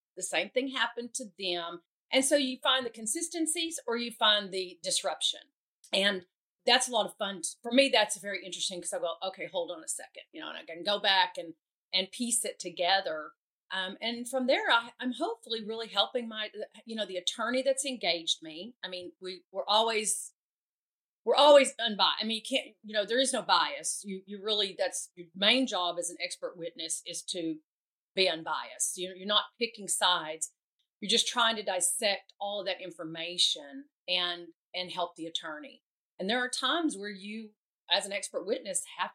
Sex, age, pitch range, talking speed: female, 40-59, 185-250 Hz, 195 wpm